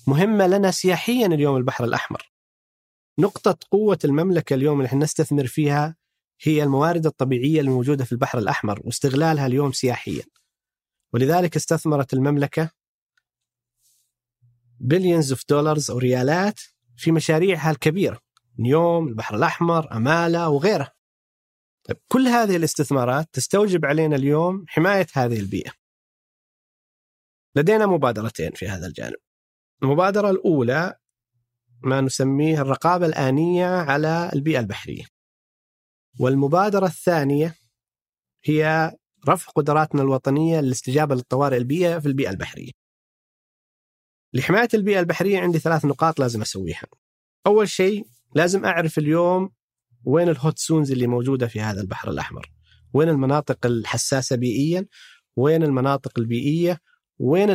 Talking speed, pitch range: 110 wpm, 125-170 Hz